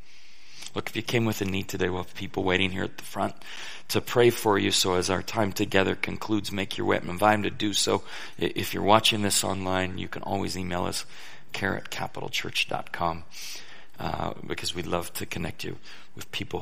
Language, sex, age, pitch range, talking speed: English, male, 40-59, 95-130 Hz, 205 wpm